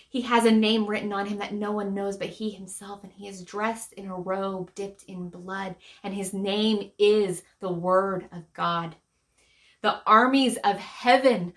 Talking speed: 185 wpm